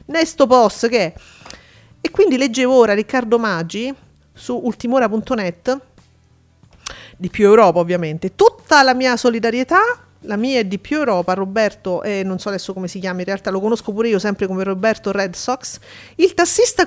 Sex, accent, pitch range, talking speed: female, native, 210-305 Hz, 170 wpm